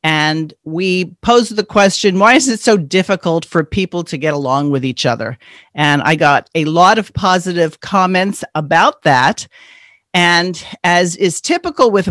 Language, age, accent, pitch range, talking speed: English, 50-69, American, 155-195 Hz, 165 wpm